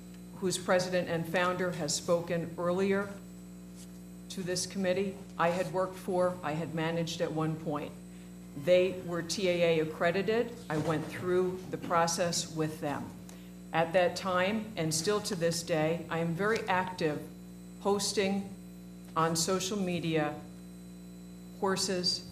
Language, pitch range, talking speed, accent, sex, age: English, 145-180 Hz, 130 wpm, American, female, 50-69